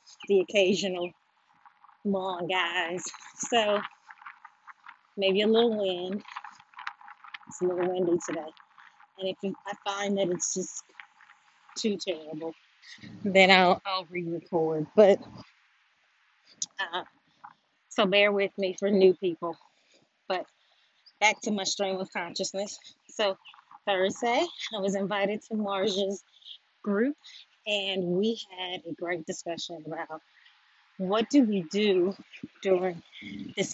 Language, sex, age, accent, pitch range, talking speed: English, female, 30-49, American, 185-220 Hz, 115 wpm